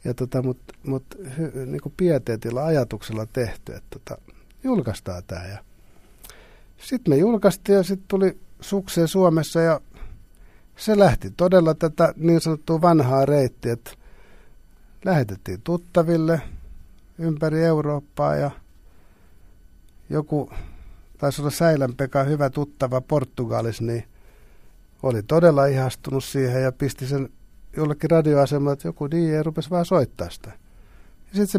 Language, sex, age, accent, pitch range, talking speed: Finnish, male, 60-79, native, 105-160 Hz, 110 wpm